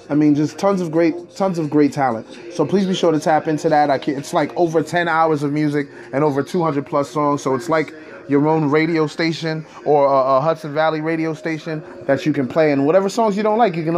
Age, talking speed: 20-39, 250 wpm